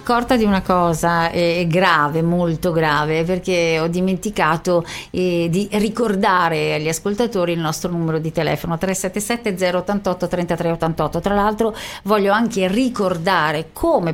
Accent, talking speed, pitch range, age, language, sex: native, 120 wpm, 170-215 Hz, 40-59, Italian, female